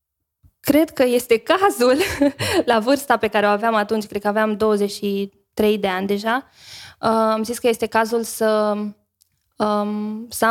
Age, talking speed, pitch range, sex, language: 20-39, 145 wpm, 205-230 Hz, female, Romanian